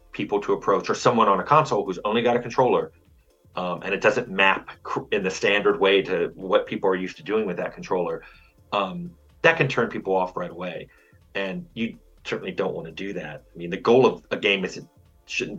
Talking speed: 225 wpm